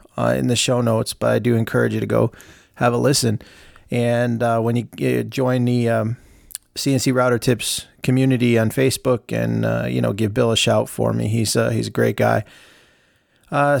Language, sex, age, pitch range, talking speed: English, male, 30-49, 115-135 Hz, 200 wpm